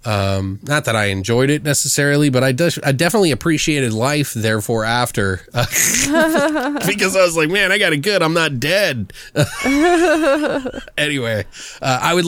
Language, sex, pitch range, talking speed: English, male, 110-155 Hz, 160 wpm